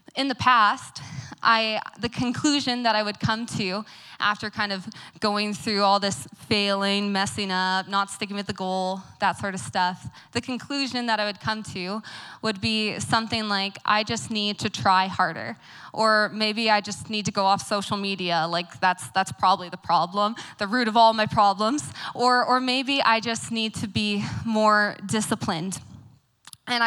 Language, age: English, 20-39